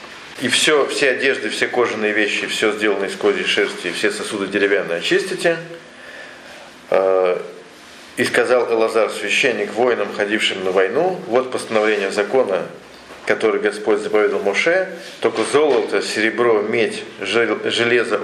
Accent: native